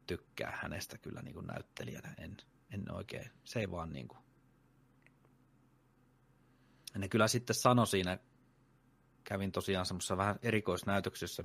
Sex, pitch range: male, 85-100 Hz